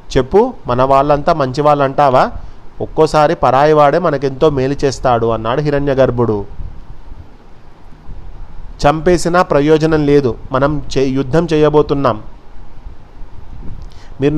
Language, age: Telugu, 30-49